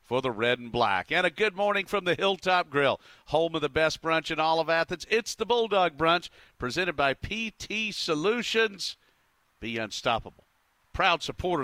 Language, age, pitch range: English, 50-69, 130-165 Hz